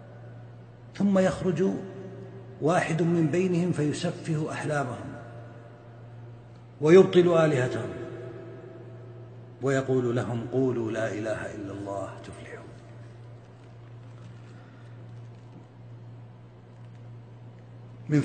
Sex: male